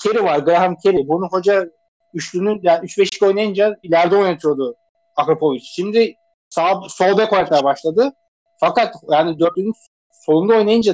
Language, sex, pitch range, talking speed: Turkish, male, 165-220 Hz, 130 wpm